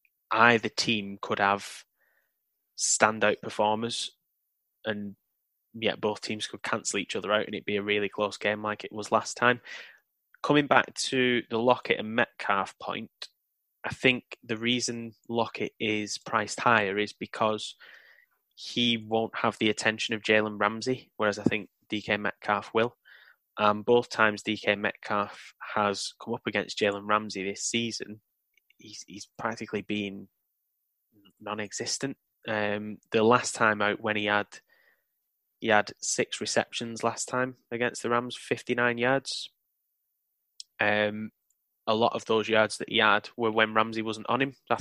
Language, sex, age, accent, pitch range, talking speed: English, male, 10-29, British, 105-120 Hz, 150 wpm